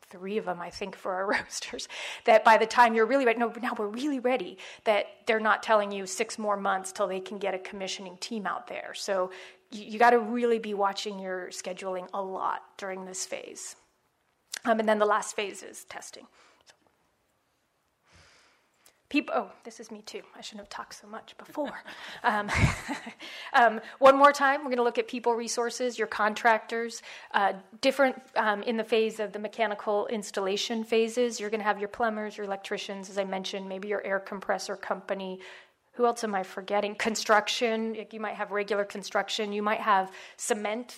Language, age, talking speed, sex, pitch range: English, 30-49, 190 wpm, female, 200-230 Hz